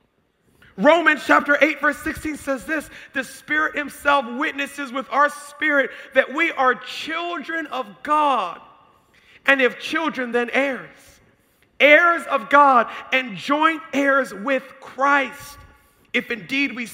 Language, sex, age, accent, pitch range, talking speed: English, male, 40-59, American, 245-285 Hz, 130 wpm